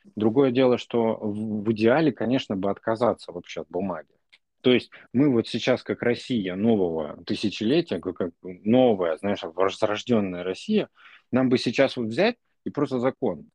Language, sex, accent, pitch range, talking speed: Russian, male, native, 95-130 Hz, 145 wpm